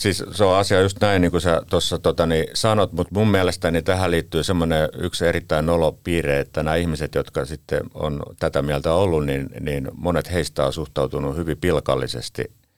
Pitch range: 70-85 Hz